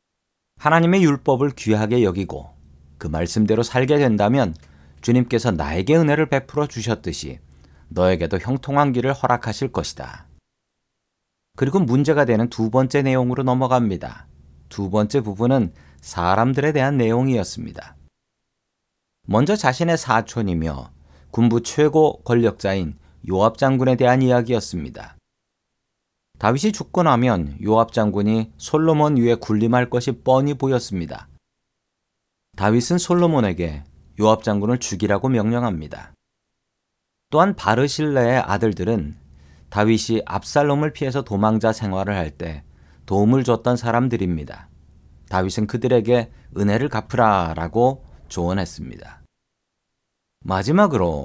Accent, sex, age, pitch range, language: native, male, 40-59, 85-130 Hz, Korean